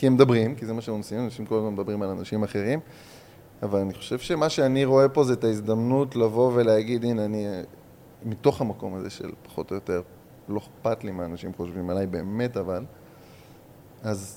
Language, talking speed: Hebrew, 180 wpm